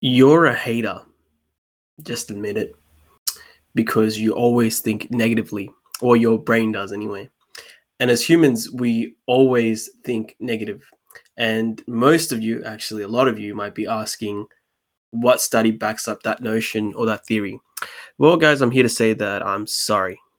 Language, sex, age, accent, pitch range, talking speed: English, male, 20-39, Australian, 110-120 Hz, 155 wpm